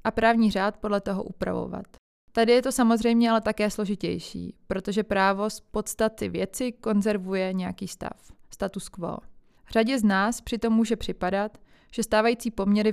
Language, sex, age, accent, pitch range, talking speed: Czech, female, 20-39, native, 190-220 Hz, 150 wpm